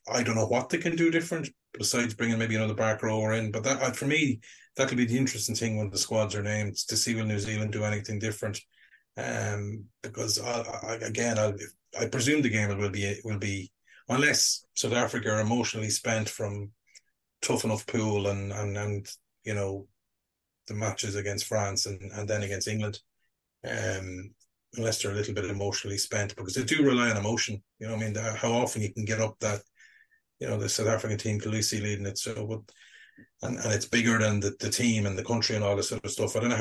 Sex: male